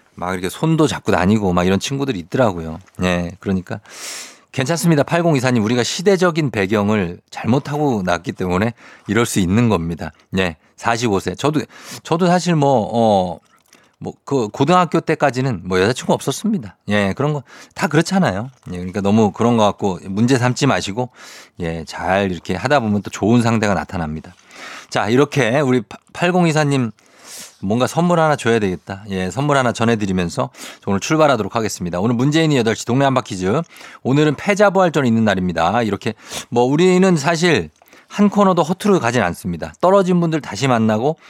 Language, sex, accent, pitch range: Korean, male, native, 100-155 Hz